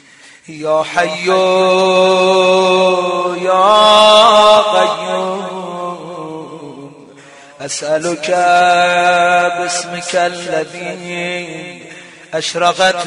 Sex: male